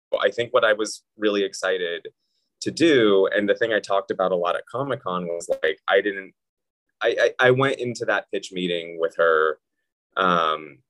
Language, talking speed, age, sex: English, 185 wpm, 20-39, male